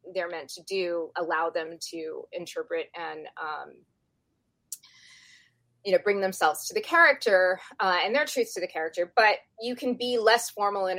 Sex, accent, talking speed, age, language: female, American, 170 wpm, 20-39, English